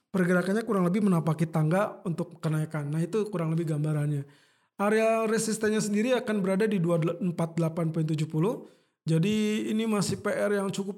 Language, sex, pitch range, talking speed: Indonesian, male, 165-205 Hz, 135 wpm